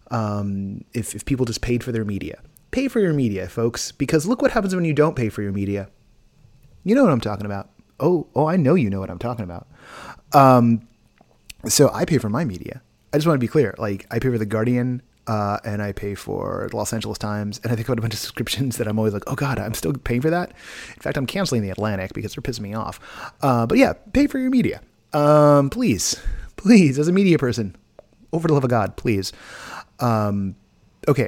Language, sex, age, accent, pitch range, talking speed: English, male, 30-49, American, 105-155 Hz, 230 wpm